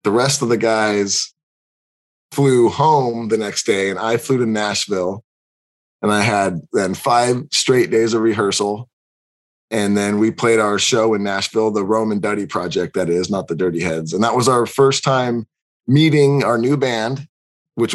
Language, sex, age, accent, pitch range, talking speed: English, male, 20-39, American, 105-130 Hz, 175 wpm